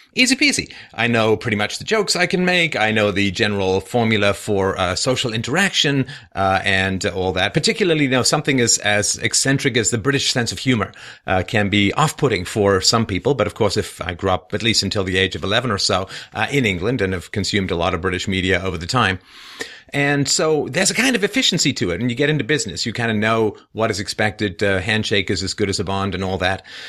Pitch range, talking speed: 100-140 Hz, 235 wpm